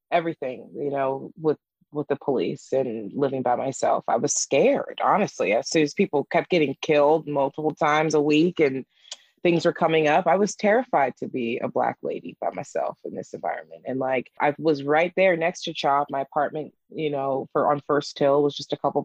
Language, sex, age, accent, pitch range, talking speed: English, female, 20-39, American, 140-170 Hz, 205 wpm